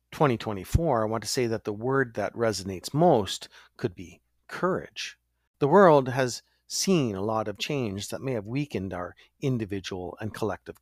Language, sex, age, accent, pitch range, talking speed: English, male, 50-69, American, 90-120 Hz, 165 wpm